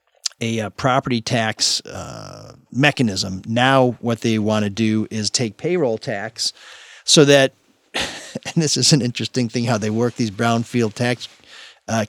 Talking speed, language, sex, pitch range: 150 wpm, English, male, 115-150 Hz